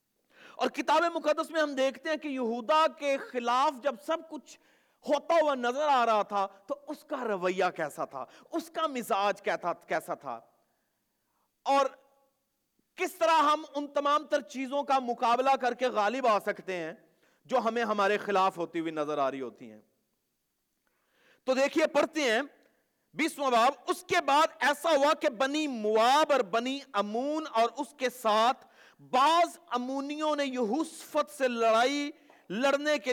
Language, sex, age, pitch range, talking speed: Urdu, male, 50-69, 215-295 Hz, 160 wpm